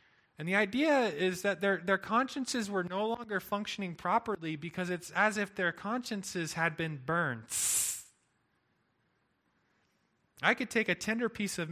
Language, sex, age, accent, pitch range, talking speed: English, male, 30-49, American, 150-195 Hz, 150 wpm